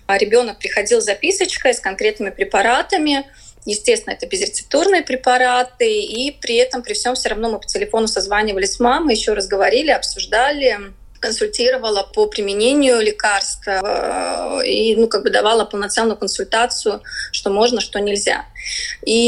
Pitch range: 205-265 Hz